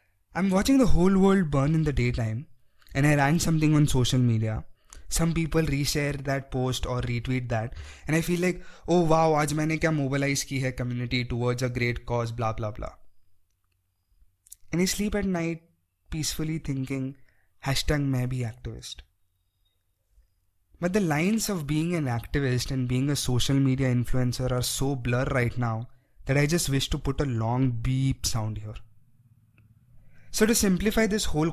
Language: English